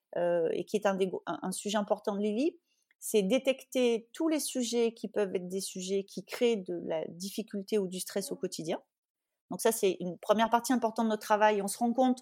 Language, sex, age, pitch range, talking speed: English, female, 30-49, 205-250 Hz, 220 wpm